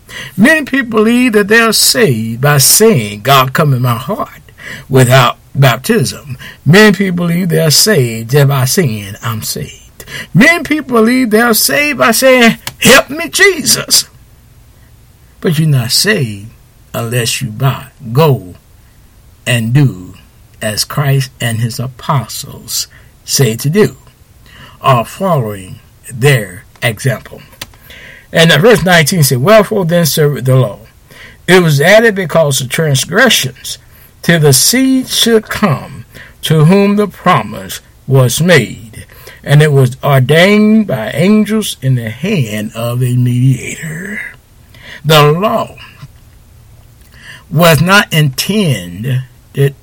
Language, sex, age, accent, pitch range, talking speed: English, male, 60-79, American, 120-180 Hz, 120 wpm